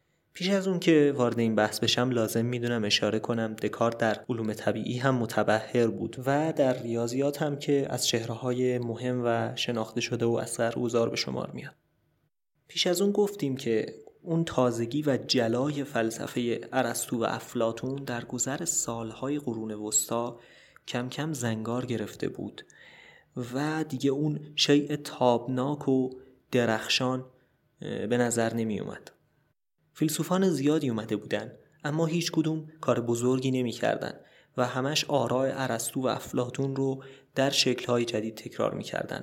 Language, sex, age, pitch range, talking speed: Persian, male, 30-49, 115-140 Hz, 140 wpm